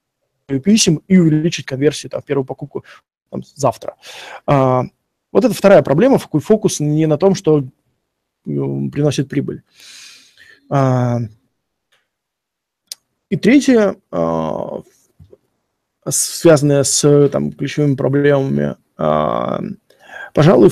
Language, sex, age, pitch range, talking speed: Russian, male, 20-39, 135-170 Hz, 75 wpm